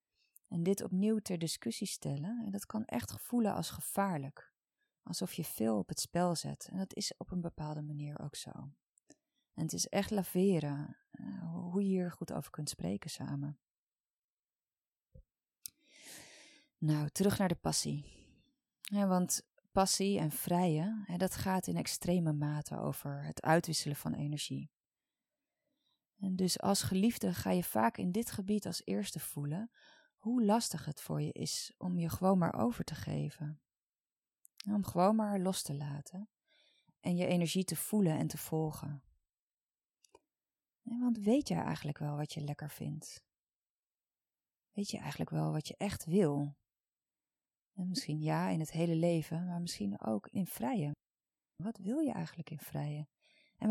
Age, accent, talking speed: 30-49, Dutch, 155 wpm